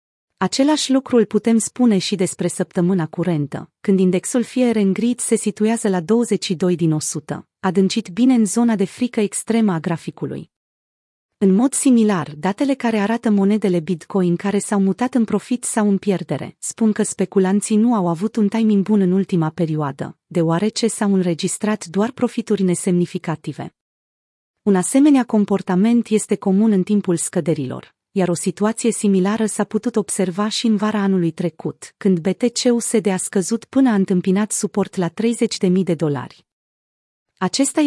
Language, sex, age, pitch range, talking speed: Romanian, female, 30-49, 180-220 Hz, 150 wpm